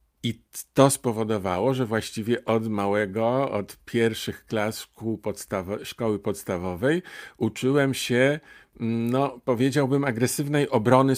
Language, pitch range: Polish, 100-125 Hz